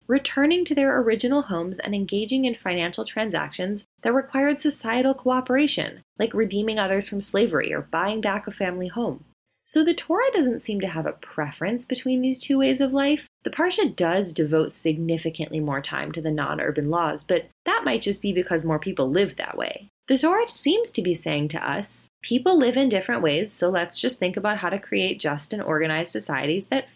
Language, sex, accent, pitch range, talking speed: English, female, American, 180-270 Hz, 195 wpm